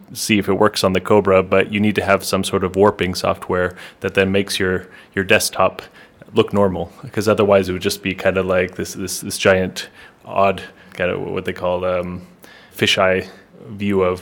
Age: 20-39